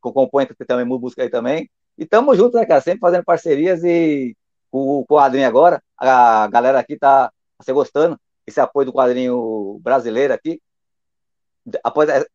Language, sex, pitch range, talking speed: Portuguese, male, 135-210 Hz, 150 wpm